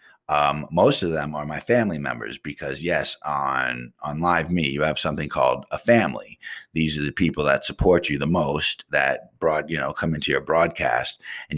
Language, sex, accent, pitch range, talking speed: English, male, American, 75-100 Hz, 195 wpm